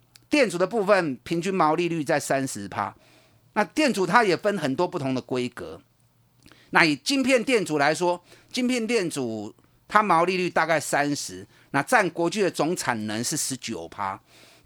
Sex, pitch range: male, 140-205 Hz